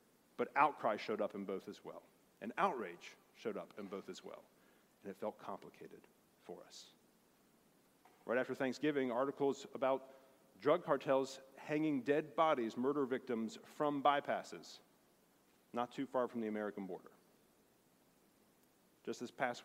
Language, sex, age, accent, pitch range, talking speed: English, male, 40-59, American, 105-135 Hz, 140 wpm